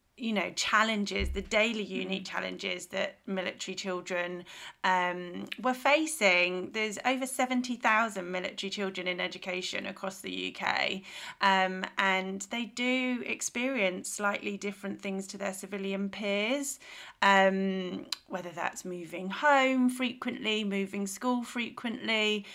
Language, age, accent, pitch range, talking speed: English, 30-49, British, 195-230 Hz, 115 wpm